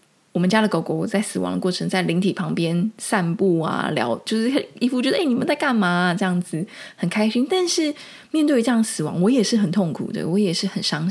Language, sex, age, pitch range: Chinese, female, 20-39, 175-225 Hz